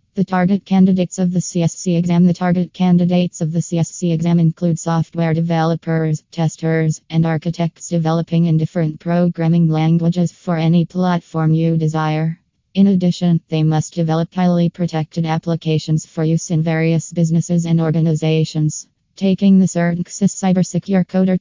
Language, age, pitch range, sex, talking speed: English, 20-39, 165-180 Hz, female, 140 wpm